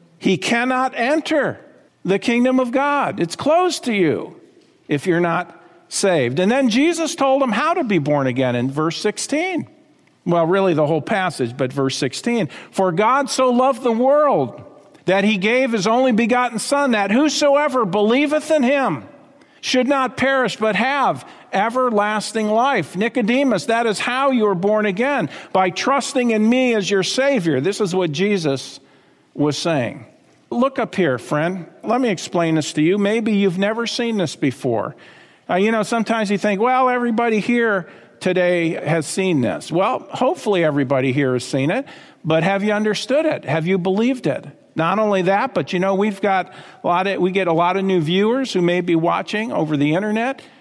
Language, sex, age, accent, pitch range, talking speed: English, male, 50-69, American, 180-250 Hz, 180 wpm